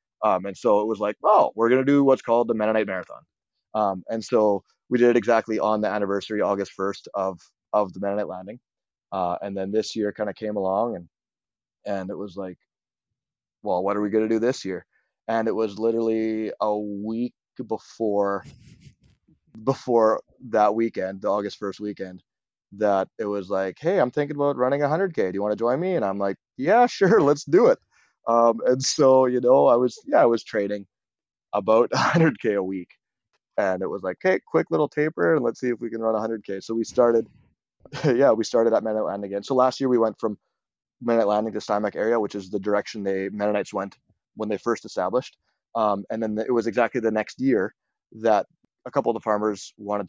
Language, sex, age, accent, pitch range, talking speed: English, male, 20-39, American, 100-115 Hz, 210 wpm